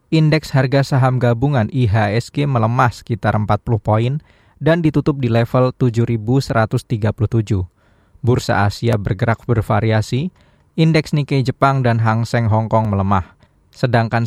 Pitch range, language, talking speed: 105-130 Hz, Indonesian, 115 wpm